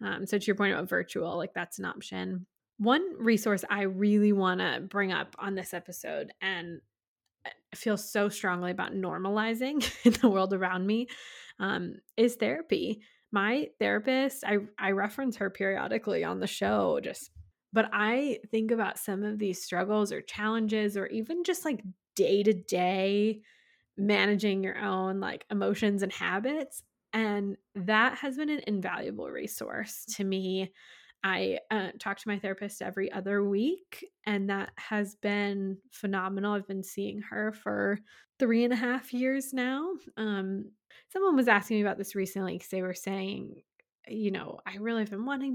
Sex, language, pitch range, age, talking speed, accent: female, English, 195-245 Hz, 20-39, 165 wpm, American